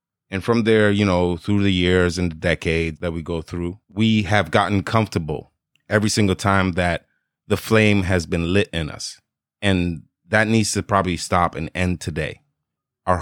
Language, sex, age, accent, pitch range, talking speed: English, male, 30-49, American, 90-105 Hz, 180 wpm